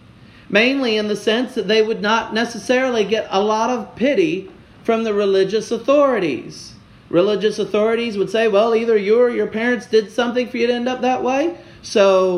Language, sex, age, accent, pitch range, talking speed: English, male, 40-59, American, 160-230 Hz, 185 wpm